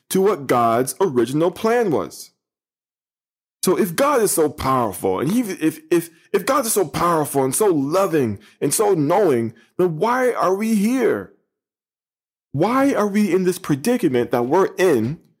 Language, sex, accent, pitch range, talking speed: English, male, American, 120-180 Hz, 155 wpm